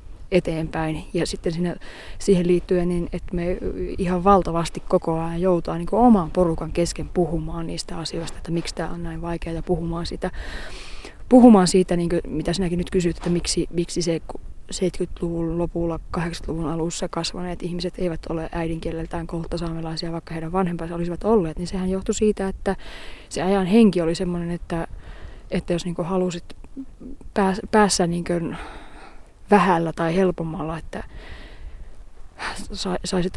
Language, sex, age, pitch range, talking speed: Finnish, female, 20-39, 170-185 Hz, 150 wpm